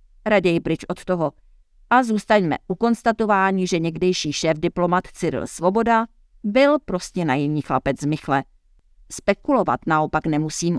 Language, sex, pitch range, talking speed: Czech, female, 150-185 Hz, 120 wpm